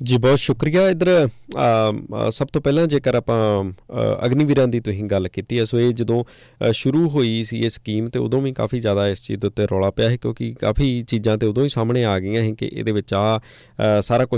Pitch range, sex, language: 110-135 Hz, male, English